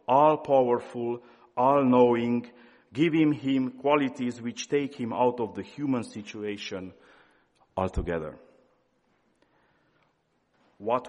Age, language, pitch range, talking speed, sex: 50-69, English, 110-145 Hz, 90 wpm, male